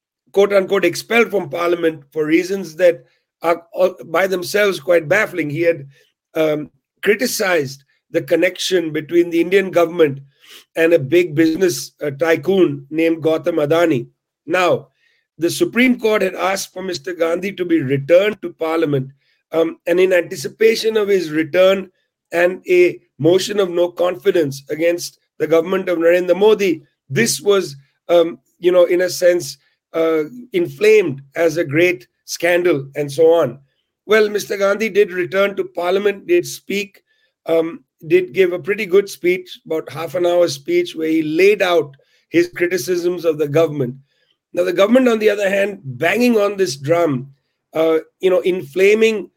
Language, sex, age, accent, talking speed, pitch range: English, male, 50-69, Indian, 150 wpm, 165-195 Hz